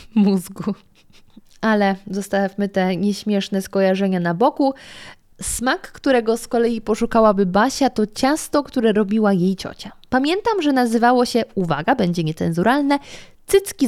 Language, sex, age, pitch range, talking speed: Polish, female, 20-39, 185-245 Hz, 120 wpm